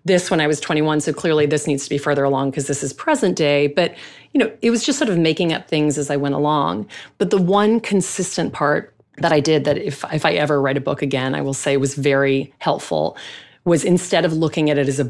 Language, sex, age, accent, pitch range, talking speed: English, female, 30-49, American, 140-175 Hz, 255 wpm